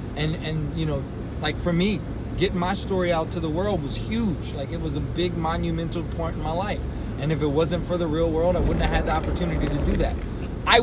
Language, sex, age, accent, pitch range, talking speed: English, male, 20-39, American, 140-185 Hz, 245 wpm